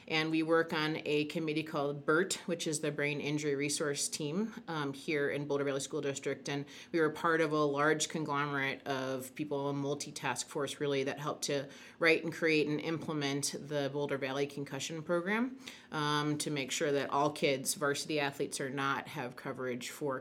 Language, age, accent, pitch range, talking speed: English, 30-49, American, 140-160 Hz, 185 wpm